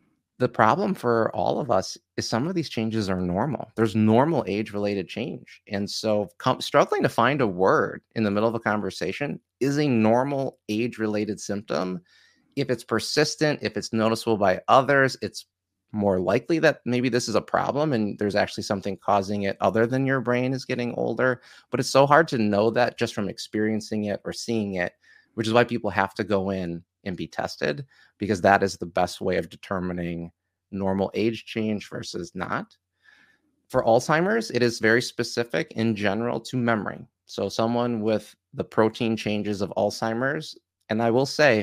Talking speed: 180 wpm